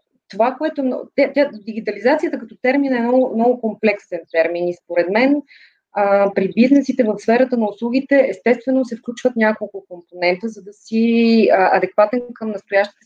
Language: Bulgarian